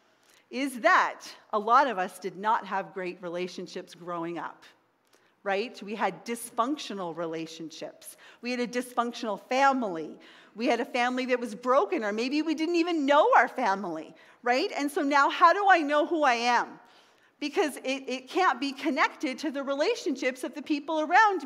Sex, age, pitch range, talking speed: female, 40-59, 205-295 Hz, 175 wpm